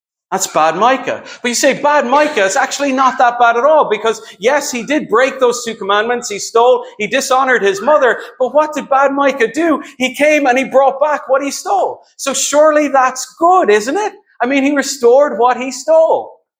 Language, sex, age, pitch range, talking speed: English, male, 40-59, 180-290 Hz, 205 wpm